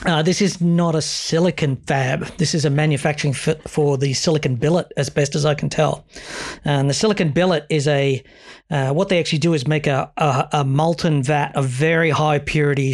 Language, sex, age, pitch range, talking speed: English, male, 40-59, 145-170 Hz, 200 wpm